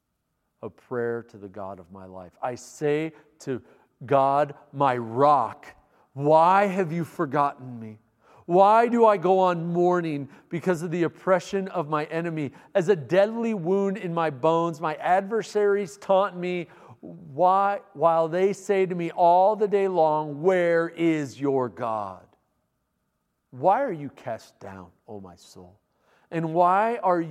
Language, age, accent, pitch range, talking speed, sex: English, 50-69, American, 130-185 Hz, 150 wpm, male